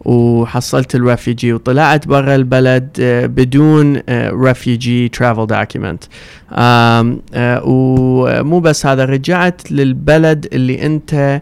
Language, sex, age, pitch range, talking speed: English, male, 30-49, 125-150 Hz, 75 wpm